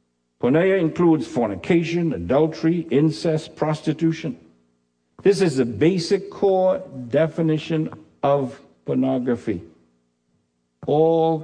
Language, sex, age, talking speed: English, male, 60-79, 80 wpm